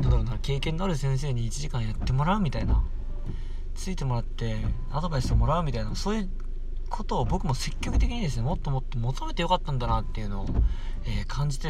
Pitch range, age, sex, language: 115-165 Hz, 20-39, male, Japanese